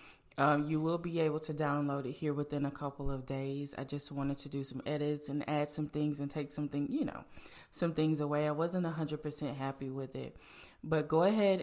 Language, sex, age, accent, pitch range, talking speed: English, female, 20-39, American, 145-155 Hz, 225 wpm